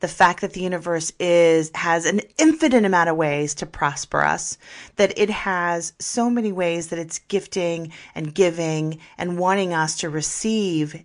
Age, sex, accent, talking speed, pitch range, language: 30-49, female, American, 170 wpm, 160-195 Hz, English